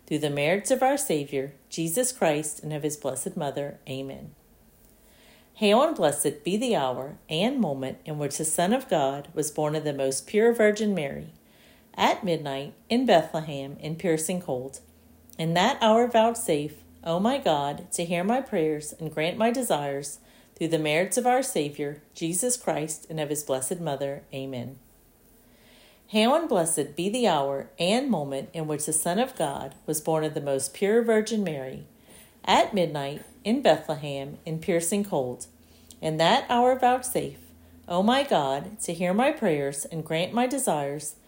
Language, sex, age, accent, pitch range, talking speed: English, female, 50-69, American, 145-215 Hz, 170 wpm